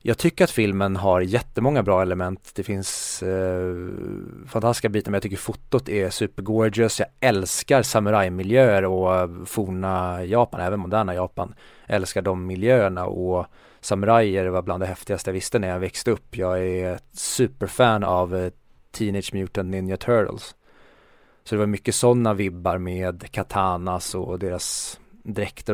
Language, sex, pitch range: Swedish, male, 95-110 Hz